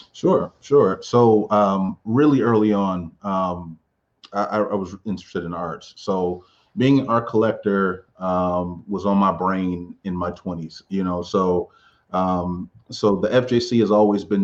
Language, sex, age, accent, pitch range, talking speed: English, male, 30-49, American, 95-110 Hz, 155 wpm